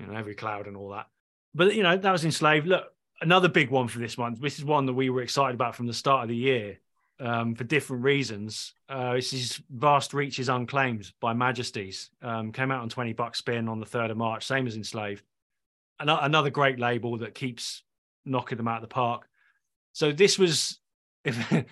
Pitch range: 120-145 Hz